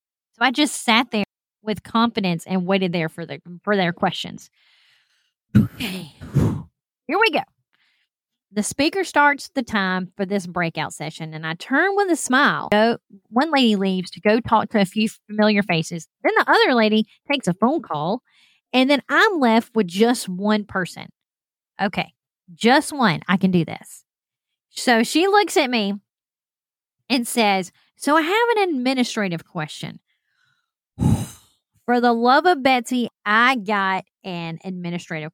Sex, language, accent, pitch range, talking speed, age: female, English, American, 195-265 Hz, 150 wpm, 30-49